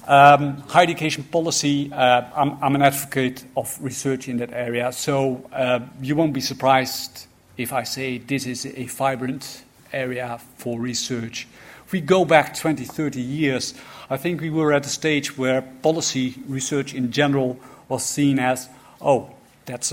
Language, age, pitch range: English, 50-69, 125-150 Hz